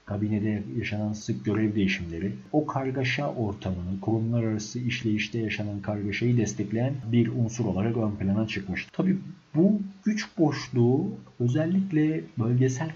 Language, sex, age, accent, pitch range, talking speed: Turkish, male, 50-69, native, 95-120 Hz, 120 wpm